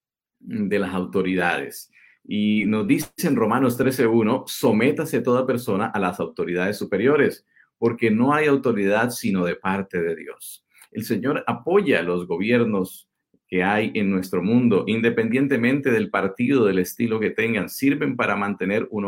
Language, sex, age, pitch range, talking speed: Spanish, male, 50-69, 95-130 Hz, 150 wpm